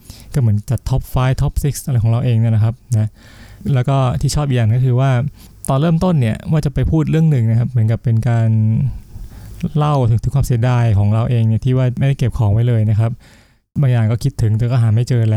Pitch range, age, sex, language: 110-130 Hz, 20-39, male, Thai